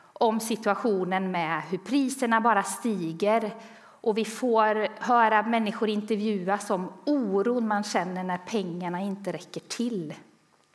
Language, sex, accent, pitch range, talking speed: Swedish, female, native, 190-285 Hz, 125 wpm